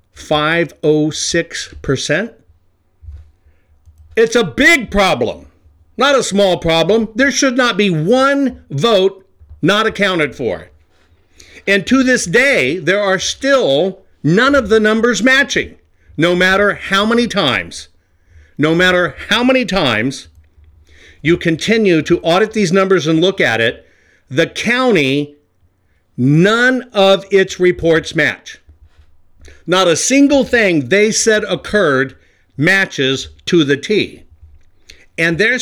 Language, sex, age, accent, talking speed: English, male, 50-69, American, 115 wpm